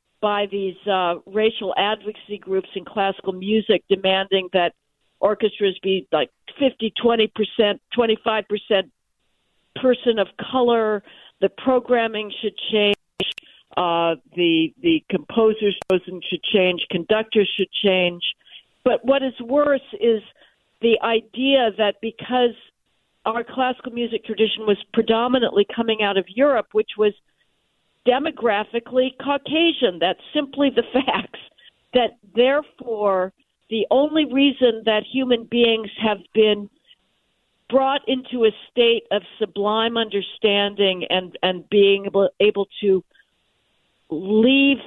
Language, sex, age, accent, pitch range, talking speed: English, female, 50-69, American, 195-235 Hz, 110 wpm